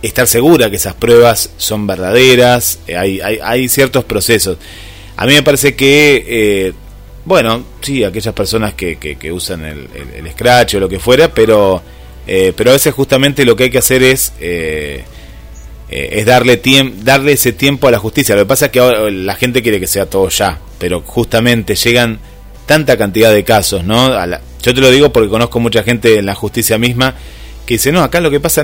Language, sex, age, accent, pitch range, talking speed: Spanish, male, 30-49, Argentinian, 95-125 Hz, 205 wpm